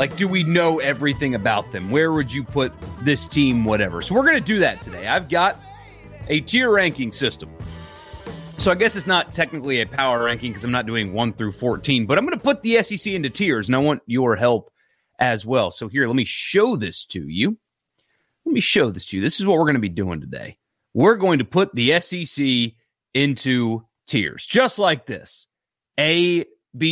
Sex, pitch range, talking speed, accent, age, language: male, 120-175 Hz, 210 wpm, American, 30-49, English